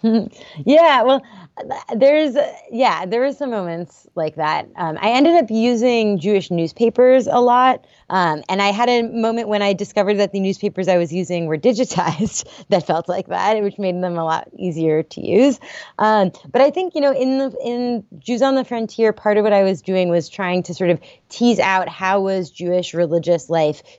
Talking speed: 195 wpm